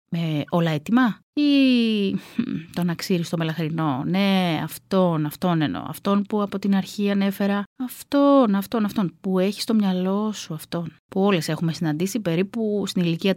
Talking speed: 150 wpm